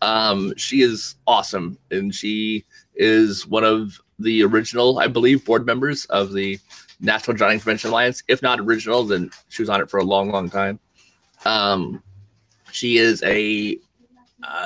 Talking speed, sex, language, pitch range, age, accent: 160 wpm, male, English, 100-125 Hz, 30-49, American